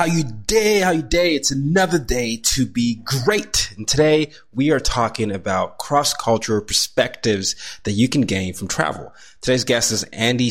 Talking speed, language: 170 wpm, English